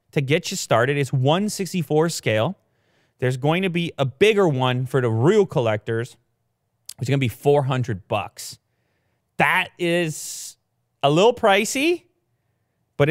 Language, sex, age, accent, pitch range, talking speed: English, male, 30-49, American, 115-150 Hz, 140 wpm